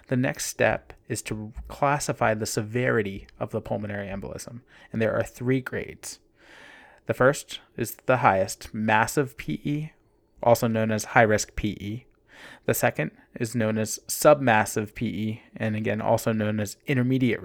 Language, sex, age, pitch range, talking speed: Hebrew, male, 20-39, 105-130 Hz, 150 wpm